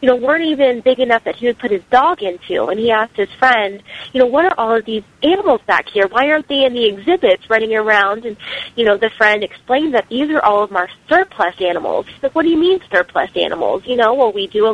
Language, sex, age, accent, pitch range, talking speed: English, female, 30-49, American, 200-260 Hz, 260 wpm